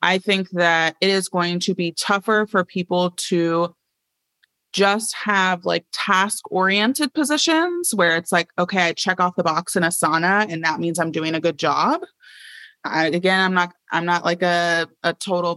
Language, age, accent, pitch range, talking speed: English, 20-39, American, 165-195 Hz, 180 wpm